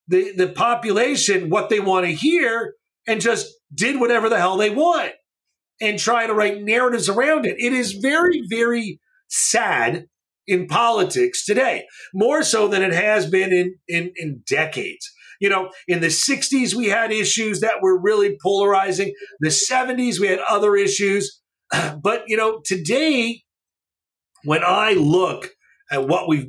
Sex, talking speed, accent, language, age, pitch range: male, 155 wpm, American, English, 40-59, 180-235 Hz